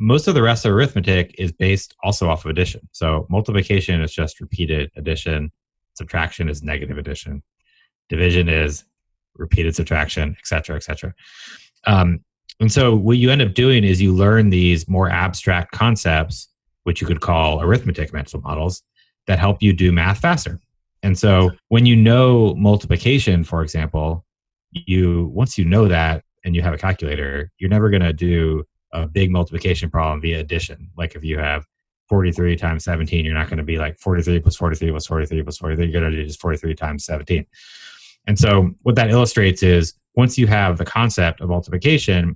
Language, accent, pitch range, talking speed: English, American, 80-100 Hz, 185 wpm